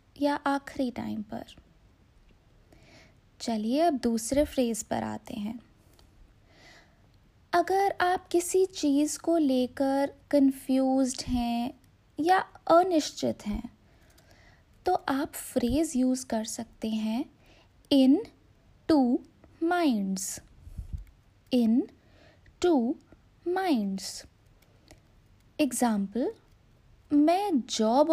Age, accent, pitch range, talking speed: 20-39, Indian, 210-295 Hz, 80 wpm